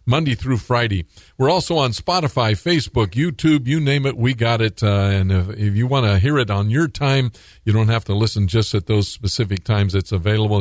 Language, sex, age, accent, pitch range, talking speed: English, male, 50-69, American, 105-145 Hz, 220 wpm